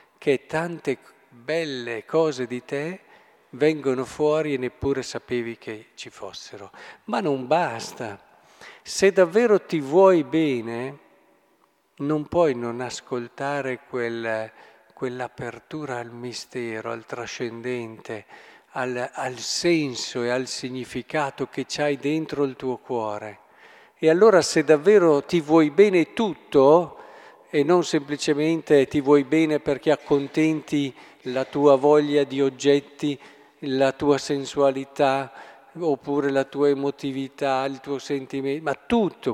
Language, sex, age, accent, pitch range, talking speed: Italian, male, 50-69, native, 130-165 Hz, 115 wpm